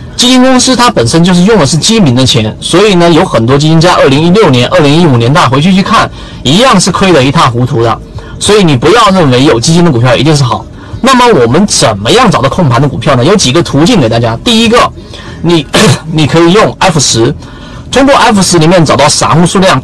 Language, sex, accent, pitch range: Chinese, male, native, 125-185 Hz